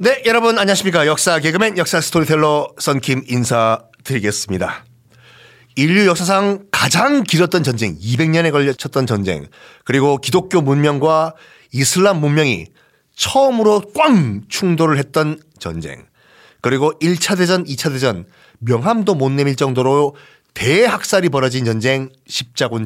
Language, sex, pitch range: Korean, male, 125-180 Hz